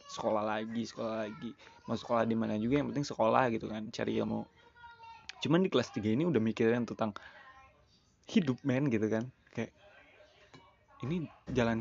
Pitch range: 110-145 Hz